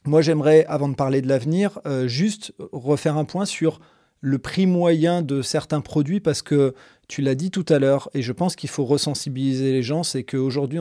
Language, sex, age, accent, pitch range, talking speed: French, male, 40-59, French, 120-145 Hz, 205 wpm